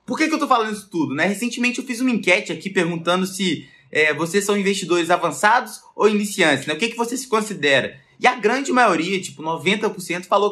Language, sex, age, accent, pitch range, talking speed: Portuguese, male, 20-39, Brazilian, 165-220 Hz, 215 wpm